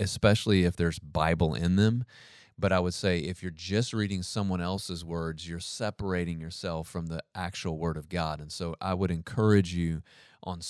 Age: 30-49